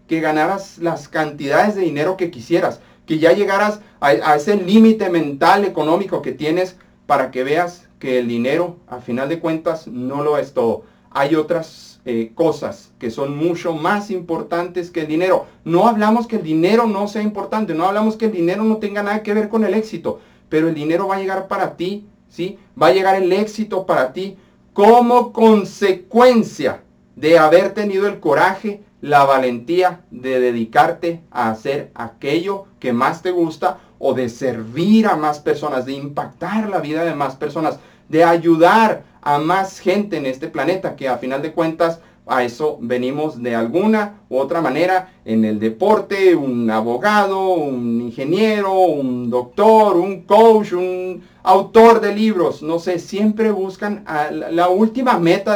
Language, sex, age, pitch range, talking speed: Spanish, male, 40-59, 150-200 Hz, 170 wpm